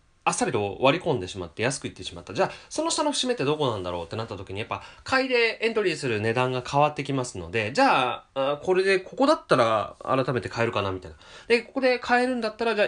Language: Japanese